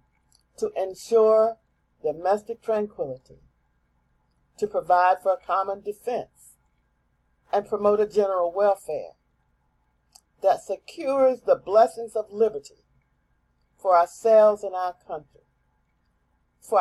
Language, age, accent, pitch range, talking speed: English, 50-69, American, 135-215 Hz, 95 wpm